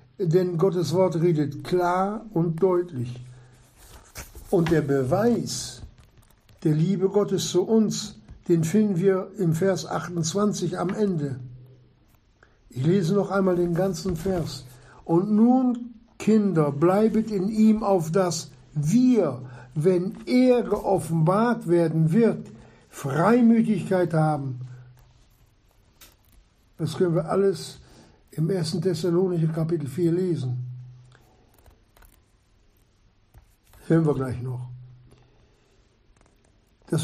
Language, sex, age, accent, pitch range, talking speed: German, male, 60-79, German, 125-195 Hz, 100 wpm